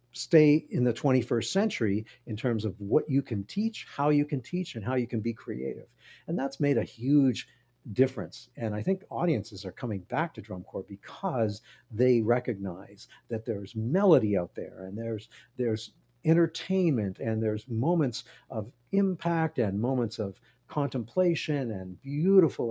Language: English